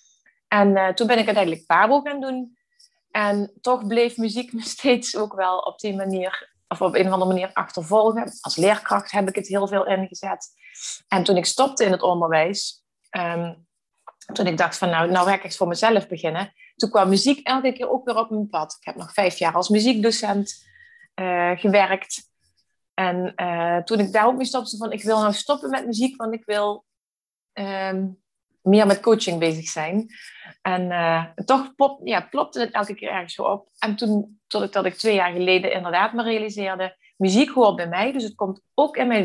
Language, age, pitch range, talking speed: Dutch, 30-49, 185-225 Hz, 200 wpm